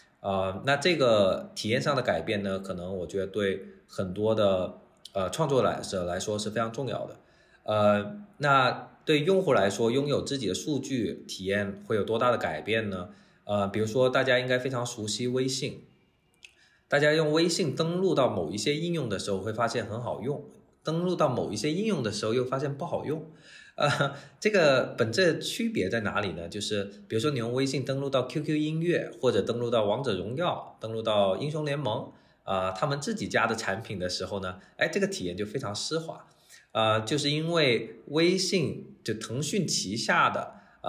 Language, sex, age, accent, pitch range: Chinese, male, 20-39, native, 100-145 Hz